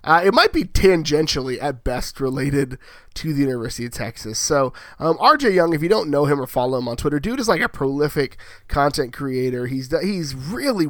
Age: 20-39